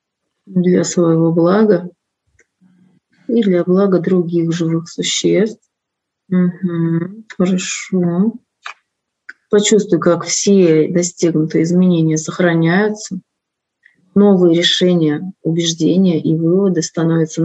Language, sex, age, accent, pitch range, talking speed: Russian, female, 30-49, native, 165-185 Hz, 75 wpm